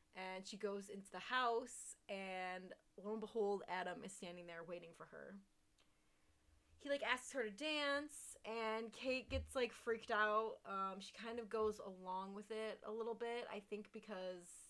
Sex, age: female, 20-39